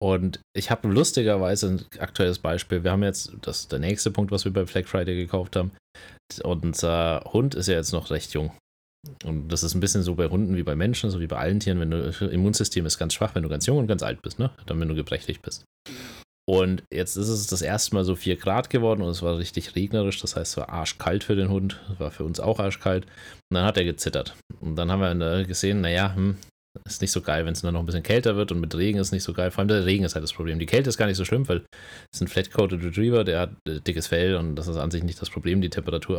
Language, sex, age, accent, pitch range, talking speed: German, male, 30-49, German, 85-100 Hz, 270 wpm